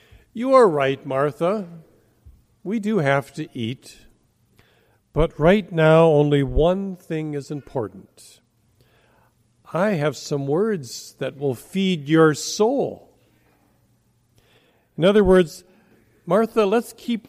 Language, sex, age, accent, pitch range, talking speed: English, male, 50-69, American, 135-180 Hz, 110 wpm